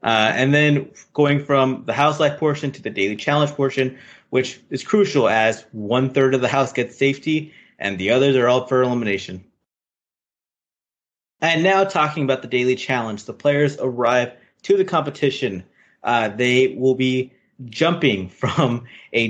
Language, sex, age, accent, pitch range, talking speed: English, male, 20-39, American, 125-145 Hz, 160 wpm